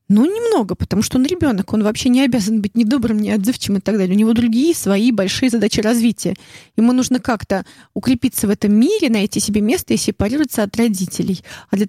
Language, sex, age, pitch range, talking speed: Russian, female, 30-49, 205-255 Hz, 205 wpm